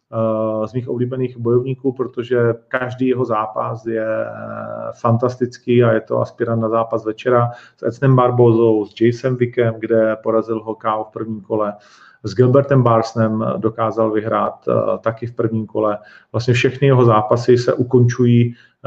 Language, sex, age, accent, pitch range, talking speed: Czech, male, 40-59, native, 115-130 Hz, 145 wpm